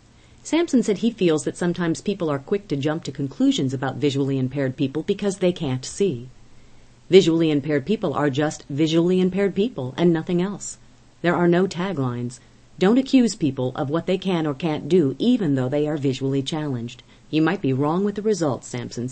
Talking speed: 190 wpm